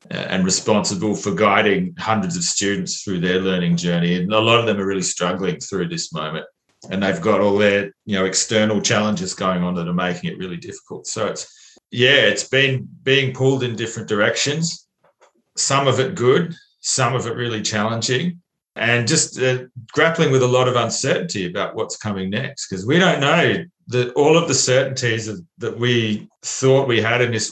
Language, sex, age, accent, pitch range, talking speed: English, male, 40-59, Australian, 100-130 Hz, 190 wpm